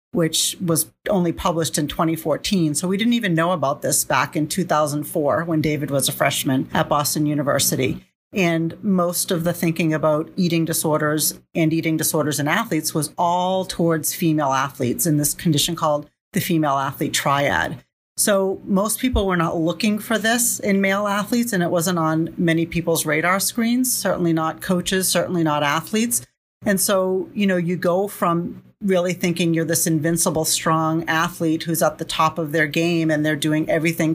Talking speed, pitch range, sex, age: 175 wpm, 155-180 Hz, female, 40-59